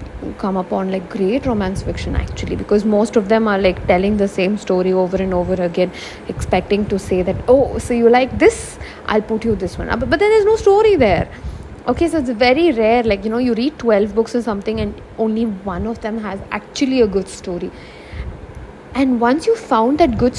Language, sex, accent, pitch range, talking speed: English, female, Indian, 205-255 Hz, 215 wpm